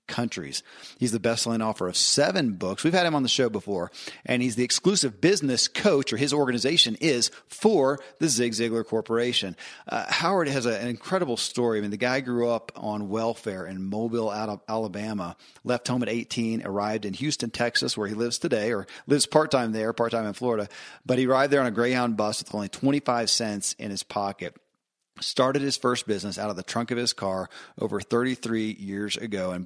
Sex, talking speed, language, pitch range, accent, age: male, 205 wpm, English, 105-125 Hz, American, 40-59